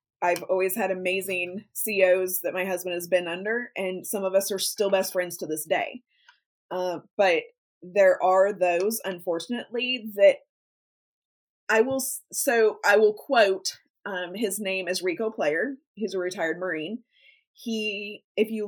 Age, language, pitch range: 20-39, English, 180-220 Hz